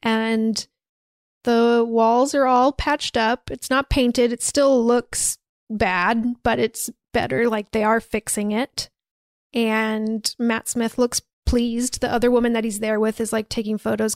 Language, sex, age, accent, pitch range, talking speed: English, female, 30-49, American, 215-240 Hz, 160 wpm